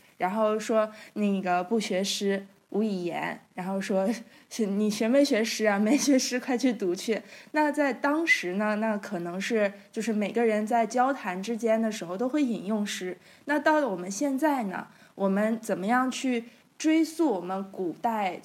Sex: female